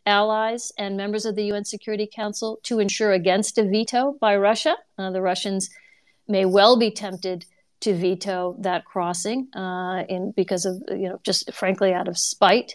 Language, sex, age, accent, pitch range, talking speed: English, female, 50-69, American, 190-220 Hz, 170 wpm